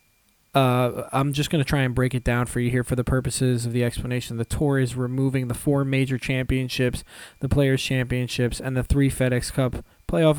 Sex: male